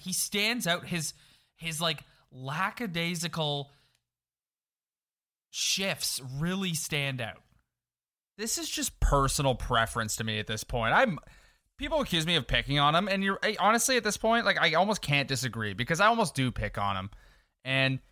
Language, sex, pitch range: English, male, 120-170 Hz